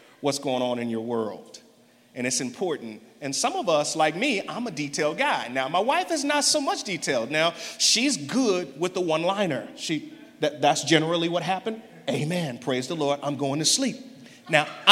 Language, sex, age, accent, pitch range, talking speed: English, male, 30-49, American, 155-225 Hz, 195 wpm